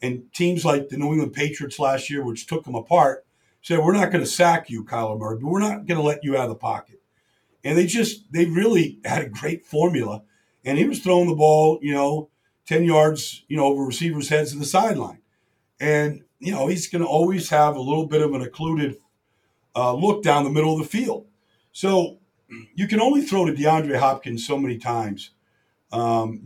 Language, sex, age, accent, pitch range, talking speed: English, male, 50-69, American, 130-170 Hz, 210 wpm